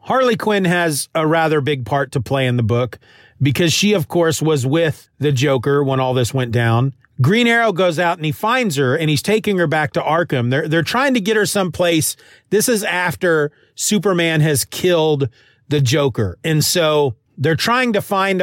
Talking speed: 200 wpm